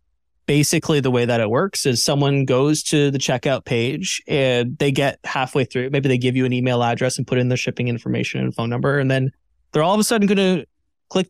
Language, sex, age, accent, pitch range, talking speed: English, male, 20-39, American, 125-160 Hz, 235 wpm